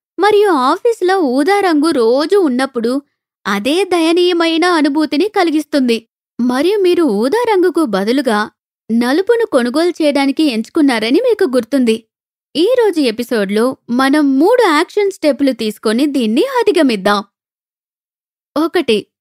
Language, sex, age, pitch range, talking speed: Telugu, female, 20-39, 245-345 Hz, 90 wpm